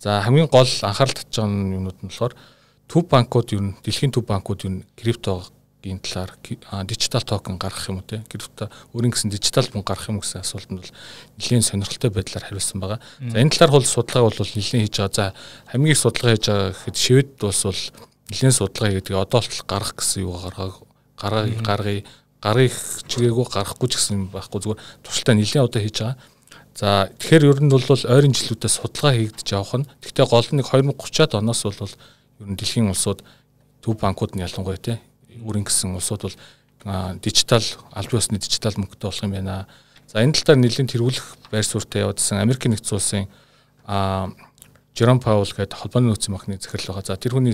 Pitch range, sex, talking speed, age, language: 100-130 Hz, male, 115 wpm, 40-59, Russian